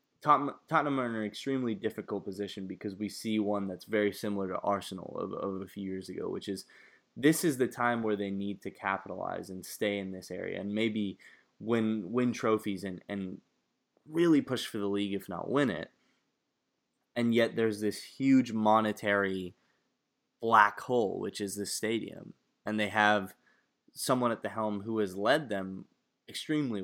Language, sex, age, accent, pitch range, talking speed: English, male, 20-39, American, 100-115 Hz, 175 wpm